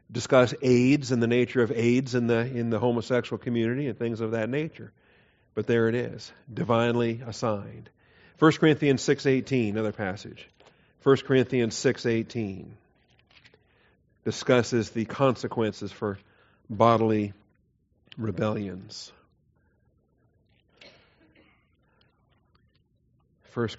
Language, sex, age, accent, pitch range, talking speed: English, male, 40-59, American, 115-140 Hz, 100 wpm